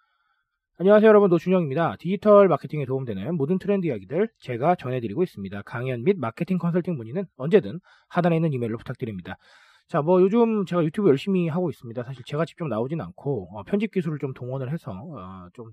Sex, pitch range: male, 130-195 Hz